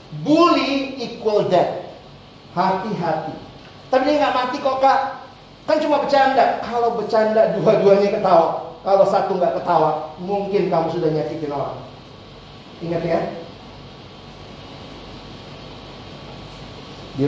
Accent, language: native, Indonesian